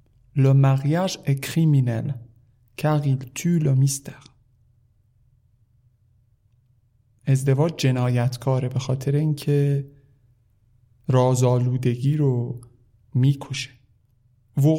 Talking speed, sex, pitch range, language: 40 wpm, male, 120-145 Hz, Persian